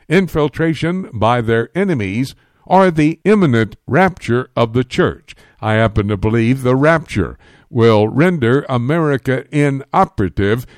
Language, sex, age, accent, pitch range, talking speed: English, male, 60-79, American, 110-150 Hz, 115 wpm